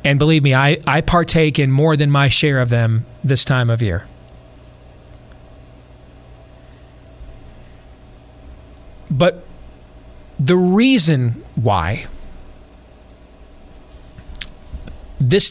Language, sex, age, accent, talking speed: English, male, 40-59, American, 85 wpm